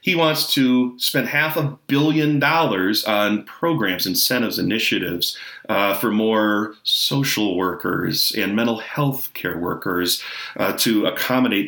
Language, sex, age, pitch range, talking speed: English, male, 30-49, 110-150 Hz, 130 wpm